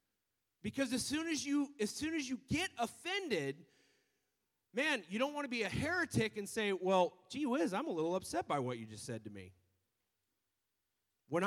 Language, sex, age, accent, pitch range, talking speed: English, male, 30-49, American, 165-255 Hz, 190 wpm